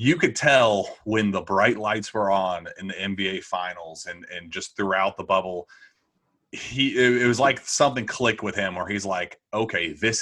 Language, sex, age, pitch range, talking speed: English, male, 30-49, 95-120 Hz, 190 wpm